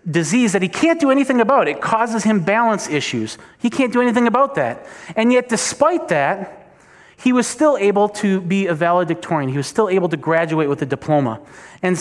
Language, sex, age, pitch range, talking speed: English, male, 30-49, 150-210 Hz, 200 wpm